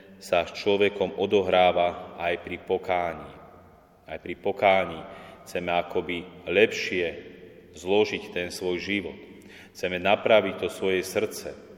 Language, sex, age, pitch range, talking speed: Slovak, male, 30-49, 90-100 Hz, 110 wpm